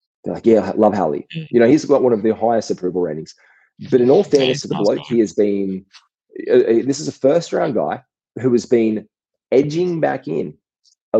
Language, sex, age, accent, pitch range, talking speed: English, male, 20-39, Australian, 100-155 Hz, 215 wpm